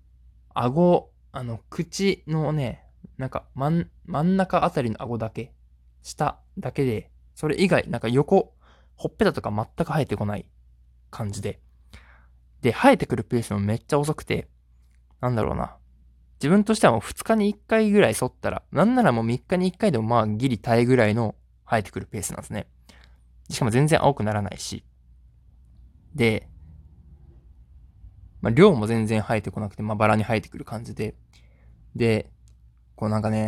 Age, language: 20-39, Japanese